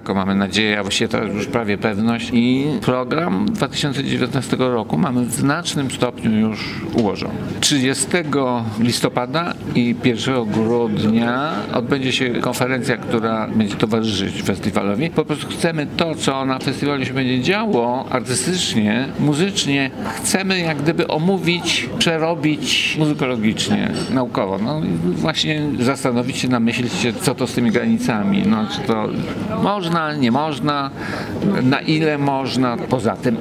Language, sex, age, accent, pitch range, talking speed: Polish, male, 50-69, native, 115-145 Hz, 130 wpm